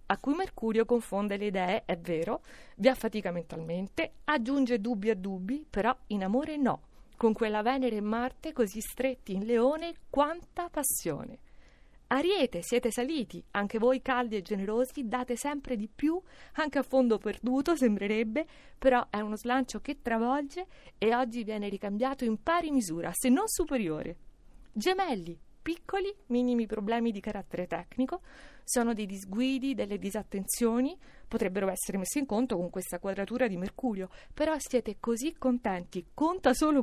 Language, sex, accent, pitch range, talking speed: Italian, female, native, 210-270 Hz, 150 wpm